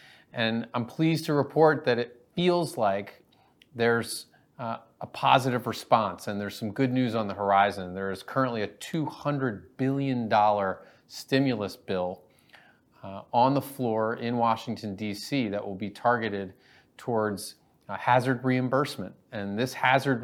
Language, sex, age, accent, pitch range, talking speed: English, male, 30-49, American, 100-125 Hz, 140 wpm